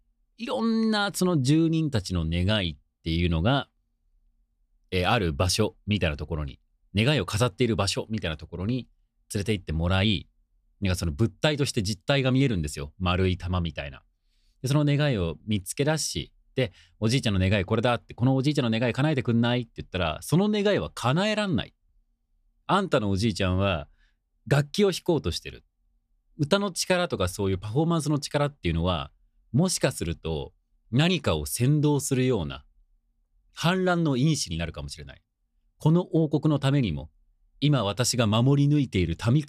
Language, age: Japanese, 40-59